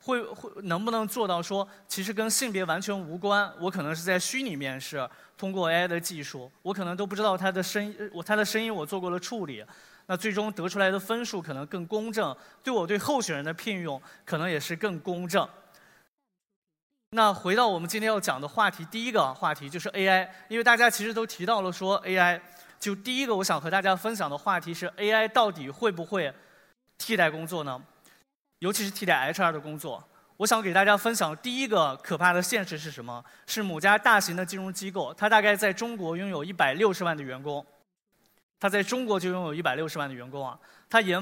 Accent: native